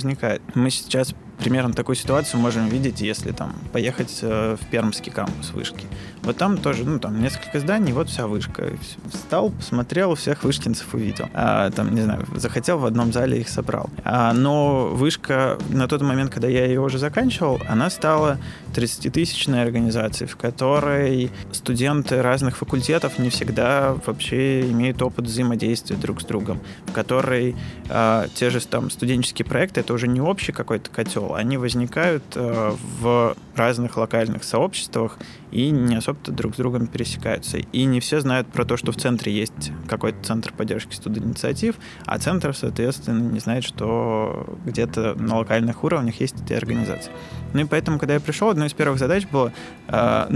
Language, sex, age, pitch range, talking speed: Russian, male, 20-39, 115-135 Hz, 165 wpm